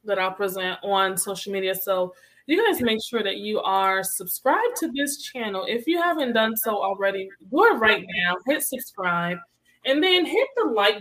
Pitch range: 185-245 Hz